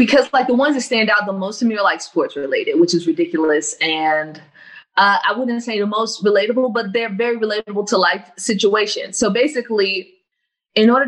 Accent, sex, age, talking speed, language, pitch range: American, female, 20-39, 200 wpm, English, 175-235 Hz